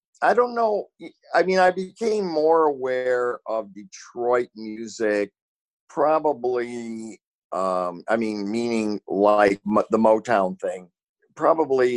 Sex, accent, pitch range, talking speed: male, American, 95-135 Hz, 110 wpm